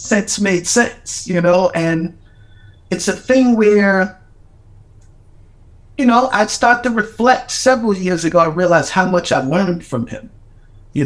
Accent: American